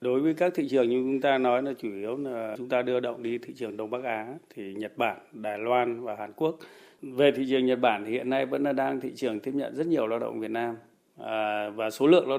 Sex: male